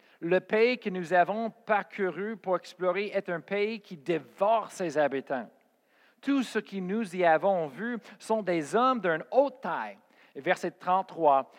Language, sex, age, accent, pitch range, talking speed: French, male, 50-69, Canadian, 165-220 Hz, 155 wpm